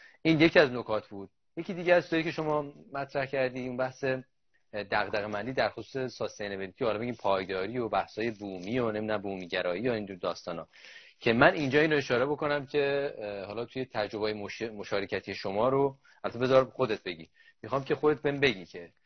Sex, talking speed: male, 175 wpm